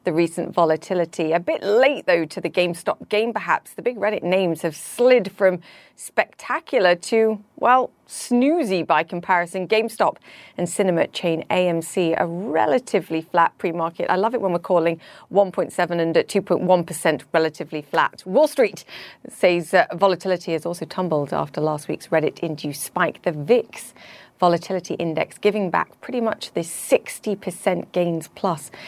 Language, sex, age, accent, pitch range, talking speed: English, female, 30-49, British, 165-200 Hz, 150 wpm